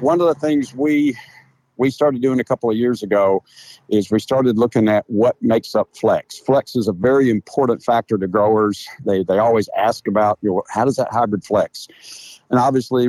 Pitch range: 105-125 Hz